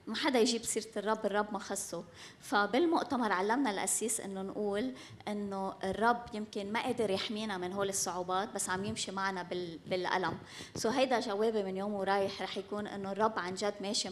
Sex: female